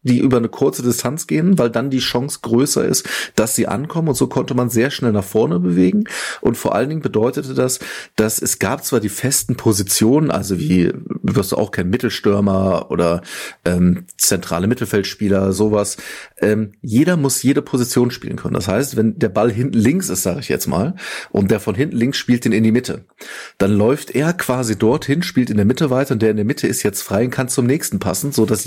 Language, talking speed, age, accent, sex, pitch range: German, 215 wpm, 30-49, German, male, 105-130 Hz